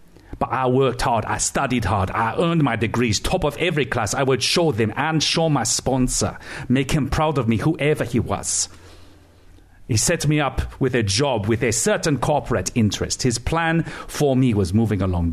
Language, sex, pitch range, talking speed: English, male, 95-135 Hz, 195 wpm